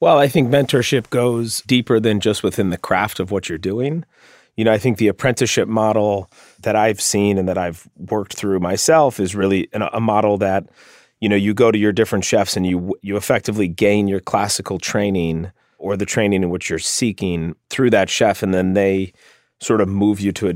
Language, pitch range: English, 90-105 Hz